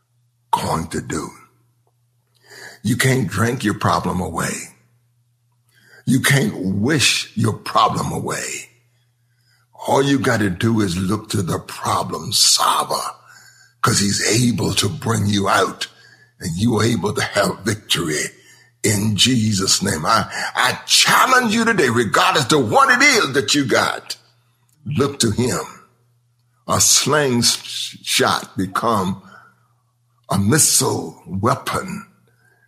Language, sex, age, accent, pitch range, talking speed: English, male, 60-79, American, 120-135 Hz, 120 wpm